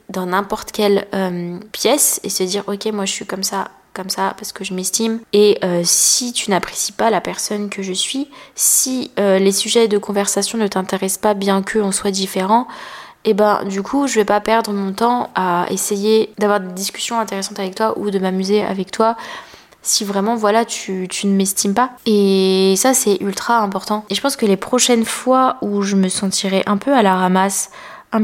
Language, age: French, 20-39